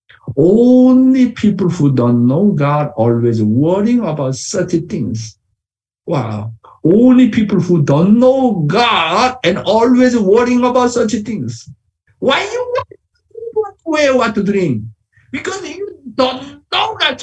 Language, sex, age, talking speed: English, male, 60-79, 120 wpm